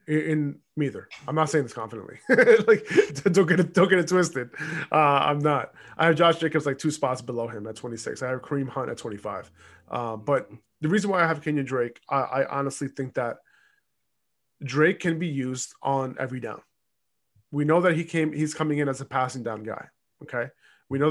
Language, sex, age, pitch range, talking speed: English, male, 20-39, 130-165 Hz, 210 wpm